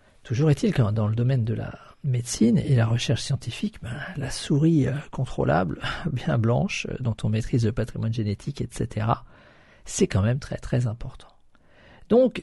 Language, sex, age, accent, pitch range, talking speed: French, male, 50-69, French, 115-155 Hz, 160 wpm